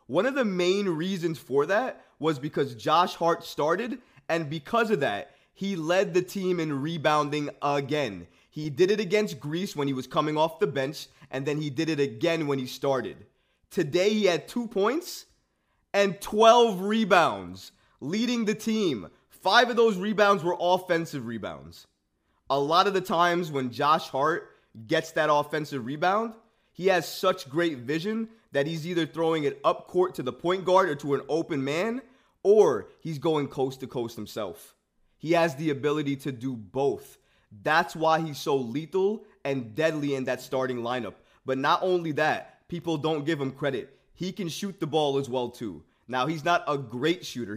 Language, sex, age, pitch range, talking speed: English, male, 20-39, 140-185 Hz, 180 wpm